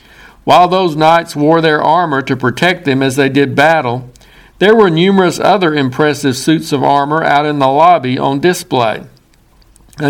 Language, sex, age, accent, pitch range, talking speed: English, male, 60-79, American, 140-175 Hz, 165 wpm